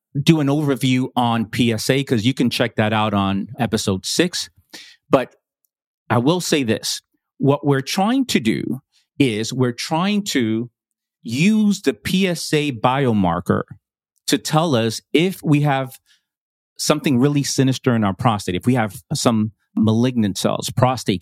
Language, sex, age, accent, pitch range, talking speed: English, male, 40-59, American, 115-150 Hz, 145 wpm